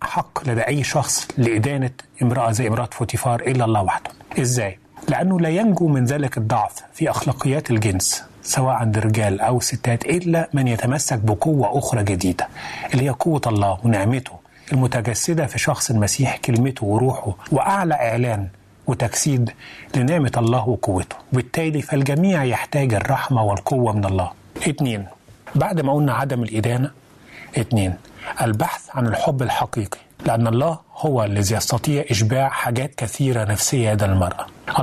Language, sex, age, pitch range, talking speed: Arabic, male, 30-49, 110-140 Hz, 135 wpm